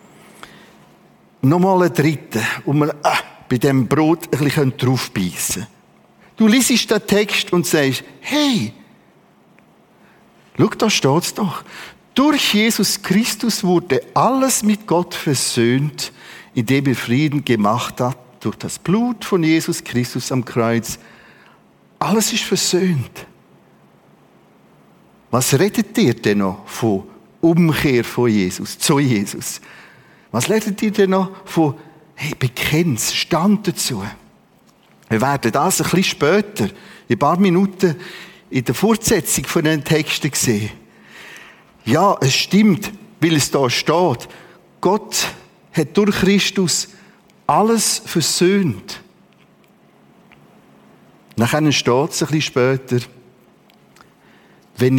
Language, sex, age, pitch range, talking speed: German, male, 50-69, 130-195 Hz, 110 wpm